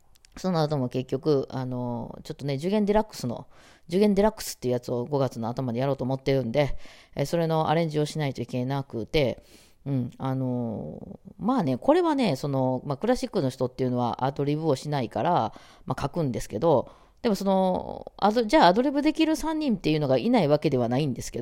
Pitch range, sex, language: 130-215 Hz, female, Japanese